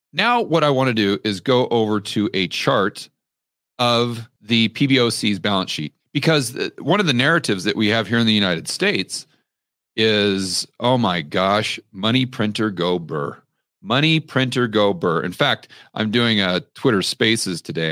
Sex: male